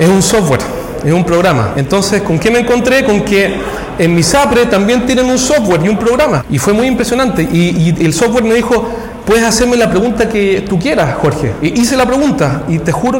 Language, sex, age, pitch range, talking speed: Spanish, male, 40-59, 165-235 Hz, 220 wpm